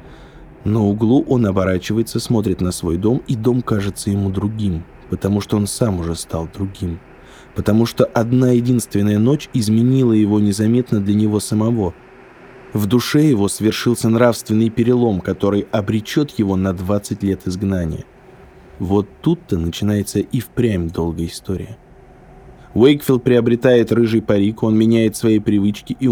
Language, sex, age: Russian, male, 20-39